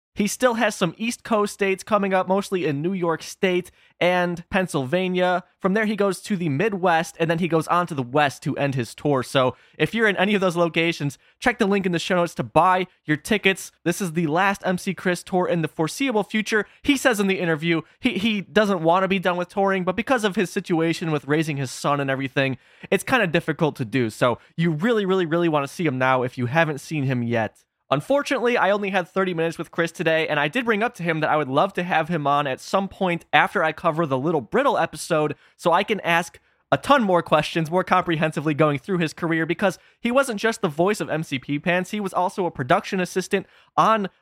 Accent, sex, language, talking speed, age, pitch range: American, male, English, 240 wpm, 20-39, 155-195 Hz